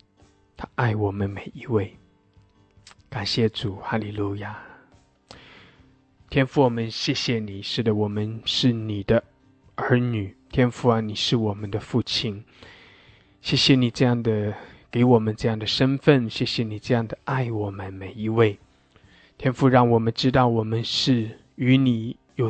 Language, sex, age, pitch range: English, male, 20-39, 105-125 Hz